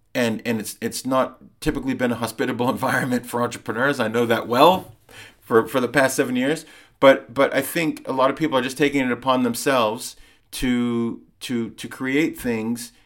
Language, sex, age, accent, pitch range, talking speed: English, male, 40-59, American, 110-135 Hz, 190 wpm